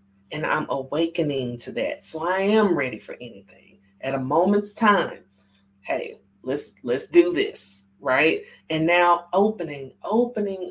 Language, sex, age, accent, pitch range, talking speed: English, female, 40-59, American, 130-200 Hz, 140 wpm